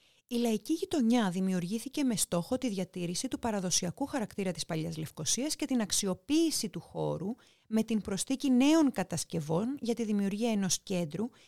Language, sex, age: Greek, female, 30-49